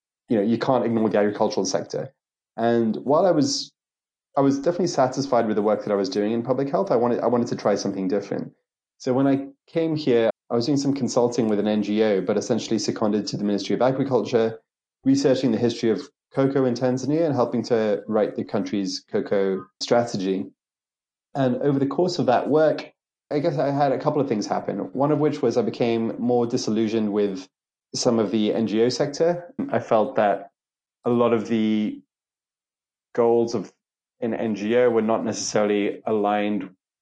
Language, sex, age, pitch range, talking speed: English, male, 30-49, 105-130 Hz, 185 wpm